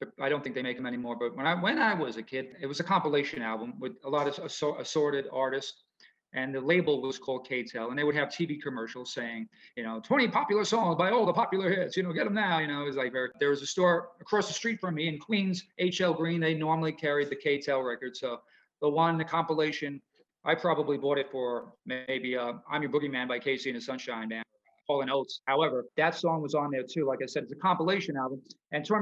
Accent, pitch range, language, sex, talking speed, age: American, 130-165 Hz, English, male, 250 wpm, 40-59